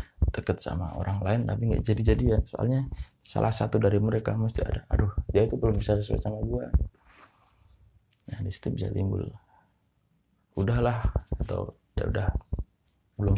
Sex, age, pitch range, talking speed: male, 20-39, 90-110 Hz, 145 wpm